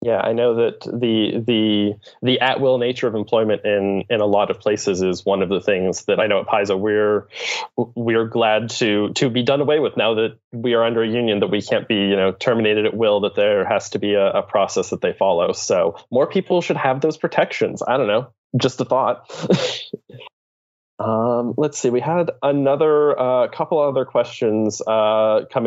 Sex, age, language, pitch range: male, 20-39, English, 105-130 Hz